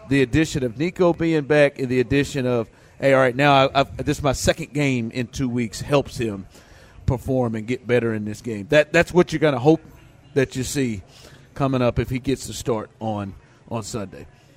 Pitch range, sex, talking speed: 130-170 Hz, male, 220 wpm